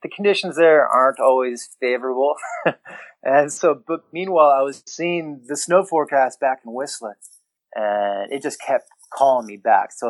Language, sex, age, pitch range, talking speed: English, male, 30-49, 115-135 Hz, 160 wpm